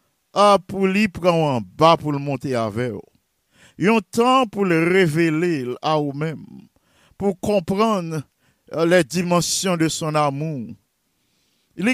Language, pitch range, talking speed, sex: English, 160-215 Hz, 125 wpm, male